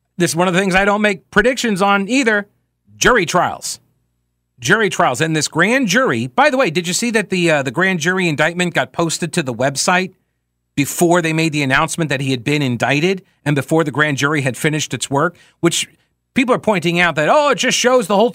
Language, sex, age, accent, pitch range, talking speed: English, male, 40-59, American, 120-205 Hz, 225 wpm